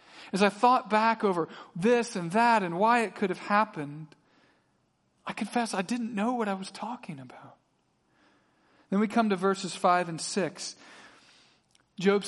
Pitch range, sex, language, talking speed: 165-215 Hz, male, English, 160 wpm